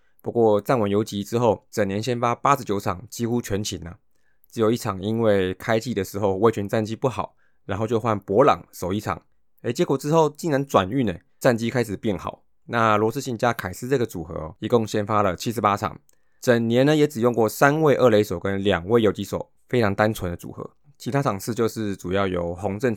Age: 20-39